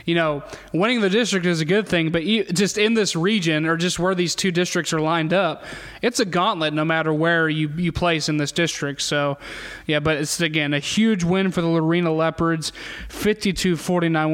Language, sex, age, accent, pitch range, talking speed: English, male, 20-39, American, 155-180 Hz, 200 wpm